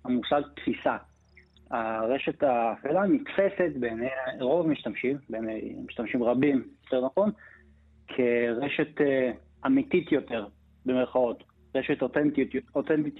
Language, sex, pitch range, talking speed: Hebrew, male, 115-145 Hz, 85 wpm